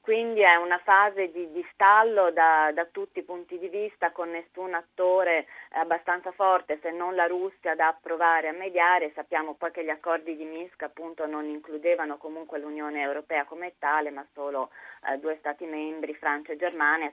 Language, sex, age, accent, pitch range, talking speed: Italian, female, 30-49, native, 155-185 Hz, 180 wpm